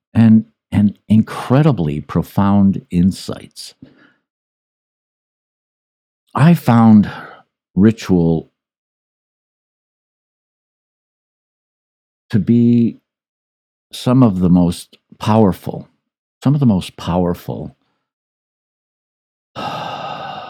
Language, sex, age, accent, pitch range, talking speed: English, male, 60-79, American, 85-115 Hz, 60 wpm